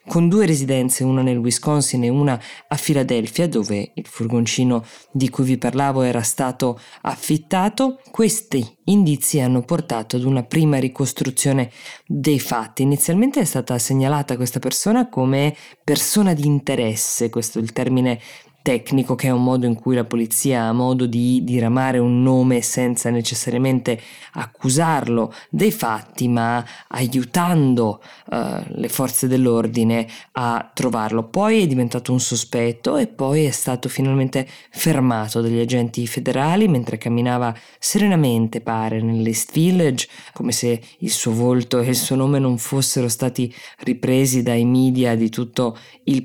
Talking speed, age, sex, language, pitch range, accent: 140 wpm, 20-39, female, Italian, 120-145 Hz, native